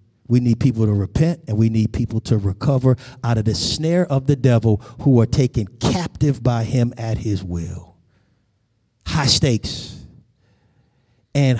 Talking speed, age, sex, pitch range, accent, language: 155 wpm, 50-69, male, 115-135 Hz, American, English